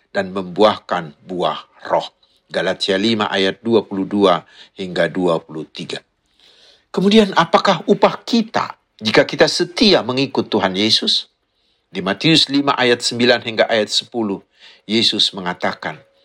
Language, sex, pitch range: Indonesian, male, 100-130 Hz